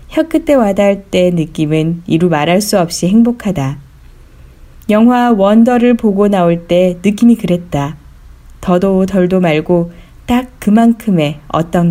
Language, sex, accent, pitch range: Korean, female, native, 170-235 Hz